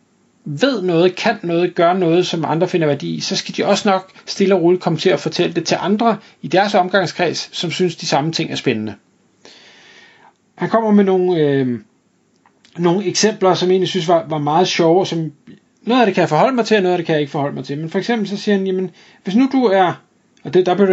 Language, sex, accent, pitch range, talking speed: Danish, male, native, 150-195 Hz, 245 wpm